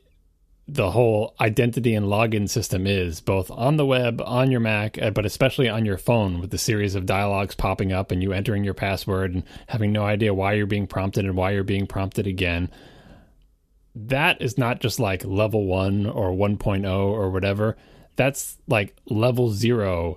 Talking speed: 180 wpm